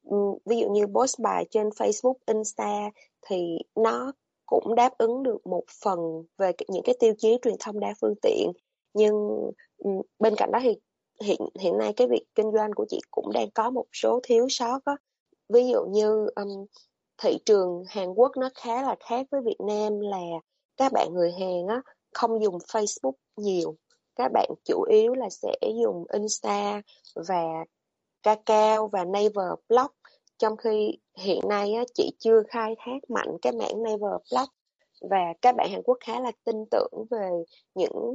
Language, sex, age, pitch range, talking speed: Vietnamese, female, 20-39, 200-260 Hz, 175 wpm